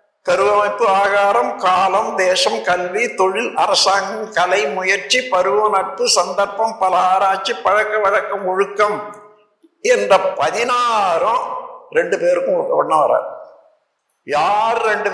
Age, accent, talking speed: 60-79, native, 100 wpm